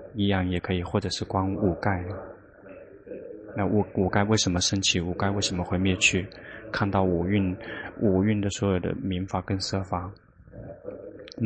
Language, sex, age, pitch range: Chinese, male, 20-39, 95-100 Hz